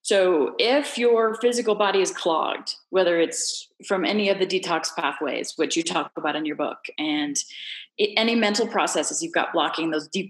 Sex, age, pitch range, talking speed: female, 30-49, 190-275 Hz, 180 wpm